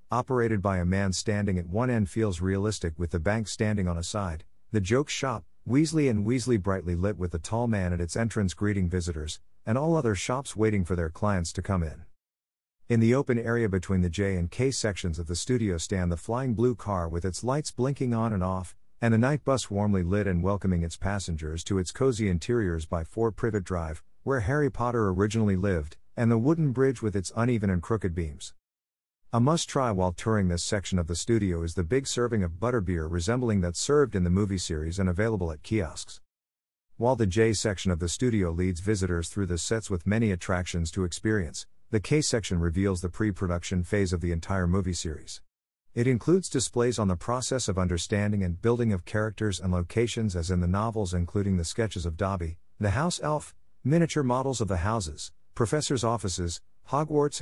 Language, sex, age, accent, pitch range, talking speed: English, male, 50-69, American, 90-115 Hz, 200 wpm